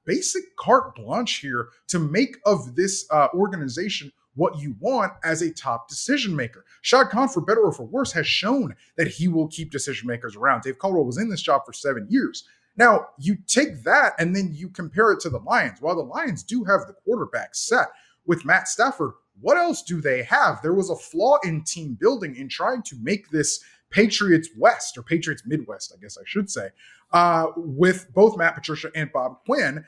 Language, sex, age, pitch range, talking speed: English, male, 20-39, 140-205 Hz, 205 wpm